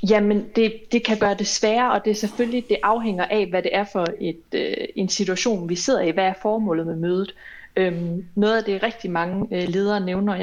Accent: native